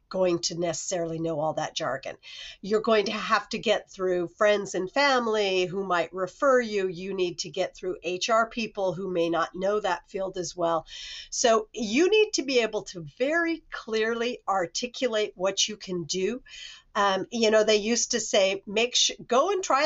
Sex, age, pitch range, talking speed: female, 50-69, 190-255 Hz, 190 wpm